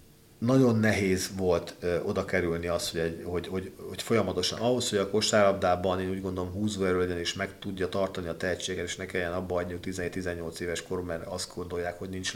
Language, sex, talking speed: Hungarian, male, 200 wpm